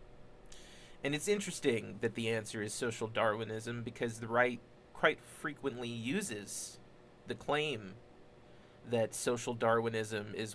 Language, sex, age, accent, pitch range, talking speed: English, male, 30-49, American, 110-125 Hz, 120 wpm